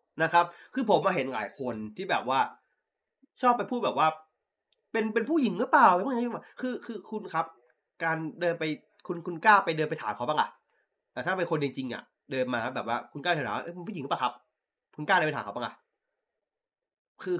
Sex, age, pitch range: male, 20-39, 145-245 Hz